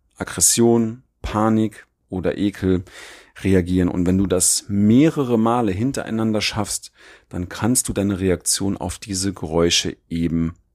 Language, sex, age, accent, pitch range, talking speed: German, male, 40-59, German, 95-110 Hz, 125 wpm